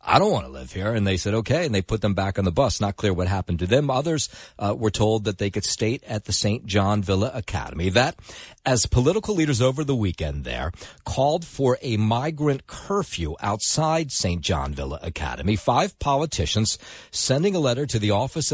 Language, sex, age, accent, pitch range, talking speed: English, male, 50-69, American, 95-130 Hz, 205 wpm